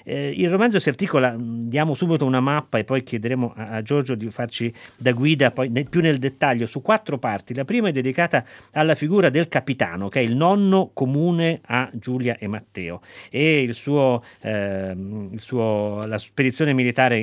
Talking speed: 165 wpm